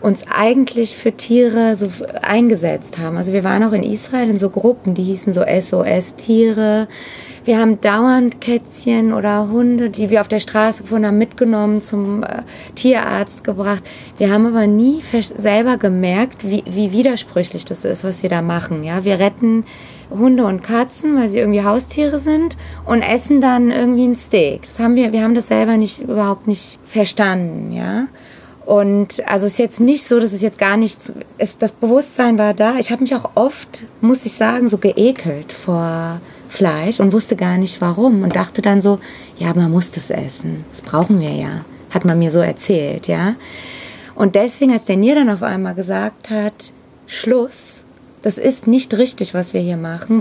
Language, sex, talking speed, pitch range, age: German, female, 185 wpm, 195-235 Hz, 20-39